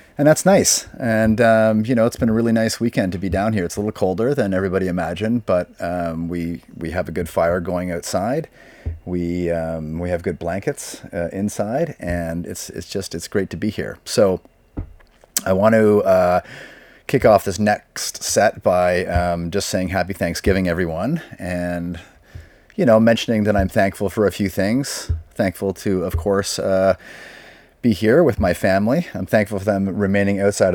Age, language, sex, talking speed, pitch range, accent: 30-49, English, male, 185 wpm, 90-105 Hz, American